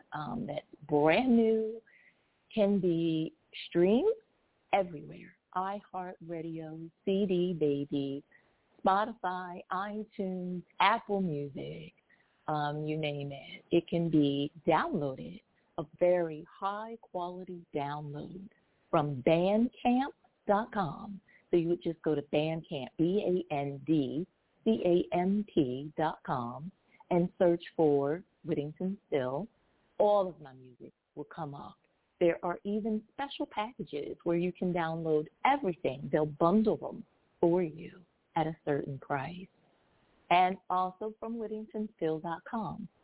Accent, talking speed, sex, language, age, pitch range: American, 100 wpm, female, English, 40-59, 155-200 Hz